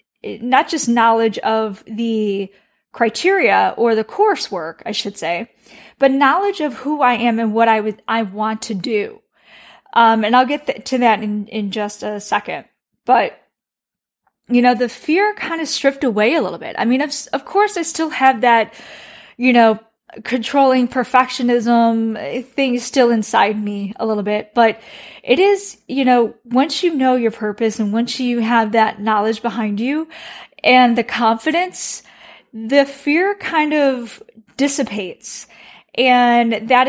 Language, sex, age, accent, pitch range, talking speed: English, female, 10-29, American, 220-265 Hz, 160 wpm